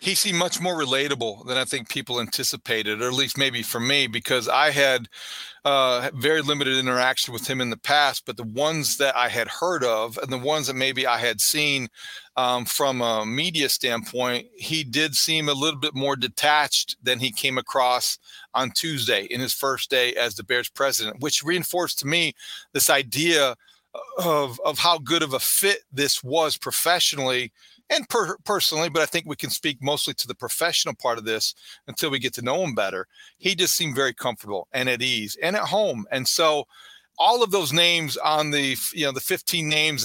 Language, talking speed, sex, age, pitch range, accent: English, 200 wpm, male, 40-59, 125-155 Hz, American